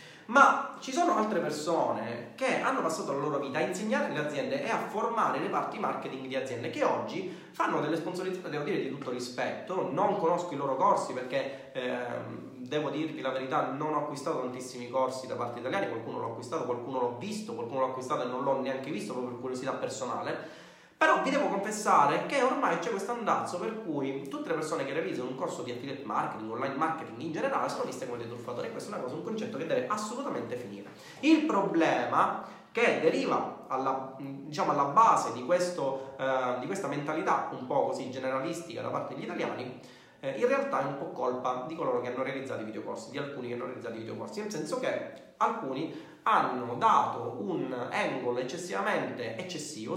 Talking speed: 195 wpm